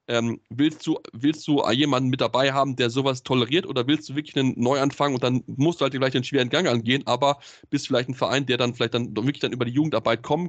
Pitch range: 120-145 Hz